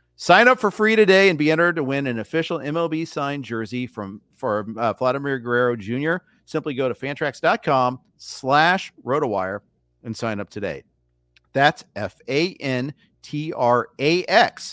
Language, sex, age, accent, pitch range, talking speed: English, male, 40-59, American, 115-165 Hz, 135 wpm